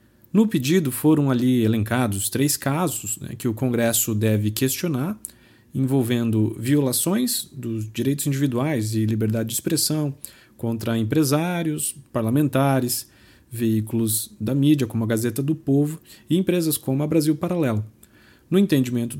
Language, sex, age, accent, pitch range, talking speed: Portuguese, male, 40-59, Brazilian, 115-155 Hz, 130 wpm